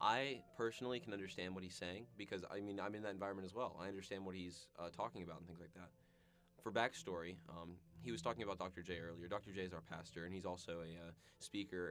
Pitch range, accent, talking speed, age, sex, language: 85-100 Hz, American, 240 wpm, 20-39, male, English